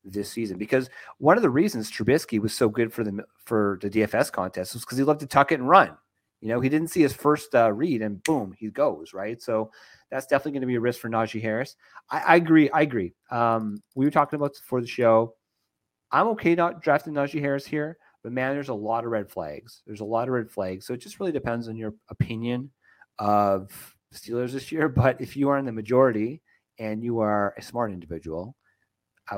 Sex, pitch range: male, 110-140 Hz